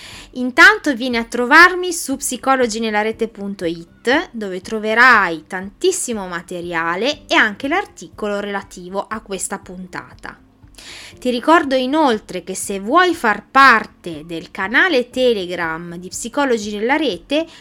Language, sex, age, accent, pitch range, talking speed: Italian, female, 20-39, native, 185-255 Hz, 115 wpm